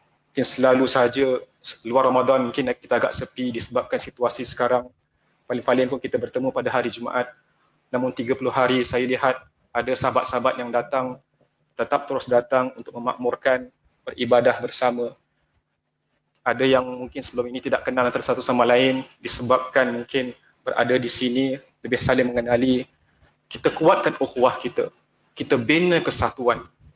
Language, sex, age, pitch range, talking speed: Malay, male, 30-49, 125-140 Hz, 135 wpm